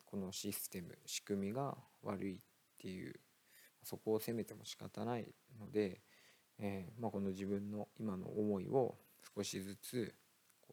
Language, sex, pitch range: Japanese, male, 95-110 Hz